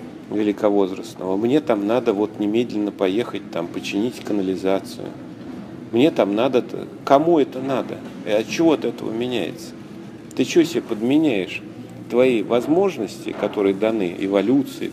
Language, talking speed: Russian, 120 wpm